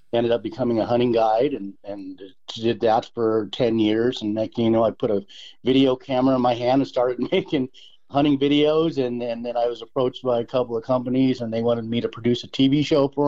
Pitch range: 105-120 Hz